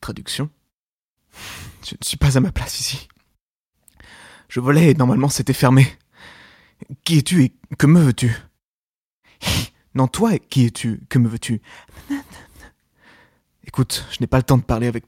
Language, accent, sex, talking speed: French, French, male, 145 wpm